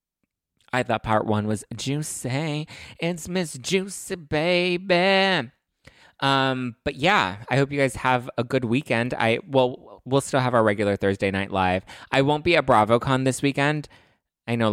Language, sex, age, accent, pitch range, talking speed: English, male, 20-39, American, 100-130 Hz, 165 wpm